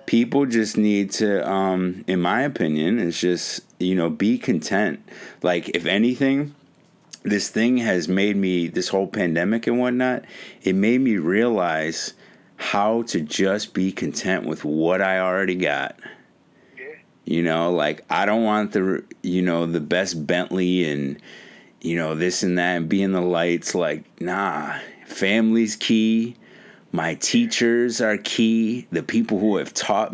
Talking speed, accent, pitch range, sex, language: 155 wpm, American, 90-115 Hz, male, English